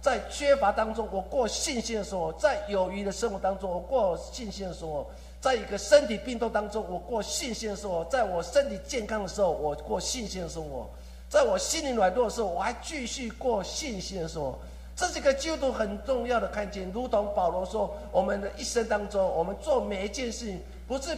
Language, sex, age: Chinese, male, 50-69